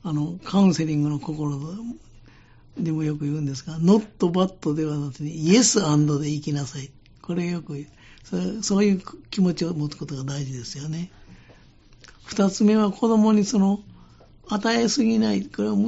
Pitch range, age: 155-210 Hz, 60-79